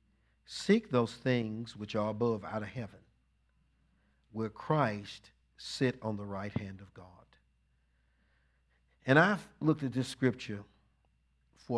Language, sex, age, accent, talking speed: English, male, 50-69, American, 125 wpm